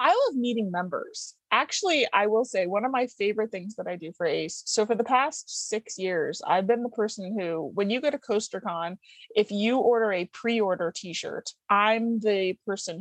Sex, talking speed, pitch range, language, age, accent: female, 200 wpm, 185-220 Hz, English, 30-49, American